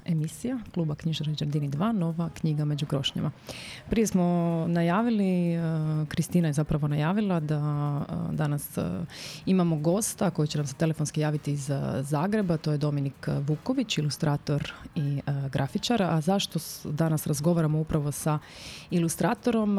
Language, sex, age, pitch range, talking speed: Croatian, female, 30-49, 150-175 Hz, 150 wpm